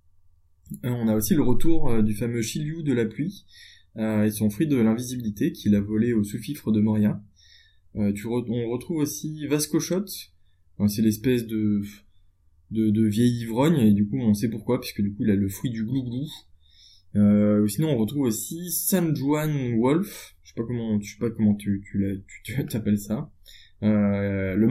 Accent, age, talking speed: French, 20-39, 185 wpm